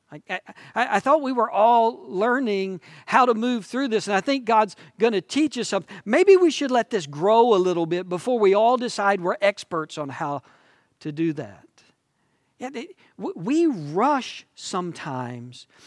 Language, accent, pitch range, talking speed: English, American, 180-250 Hz, 170 wpm